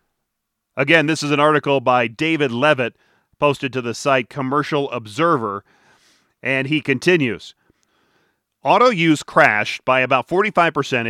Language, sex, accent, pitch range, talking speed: English, male, American, 130-165 Hz, 125 wpm